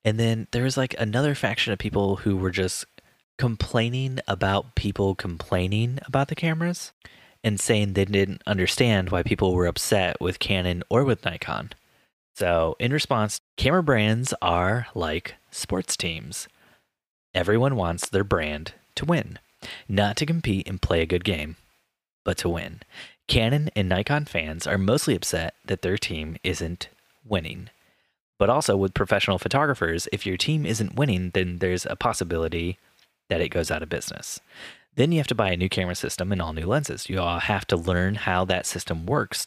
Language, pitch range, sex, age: English, 90-115 Hz, male, 20-39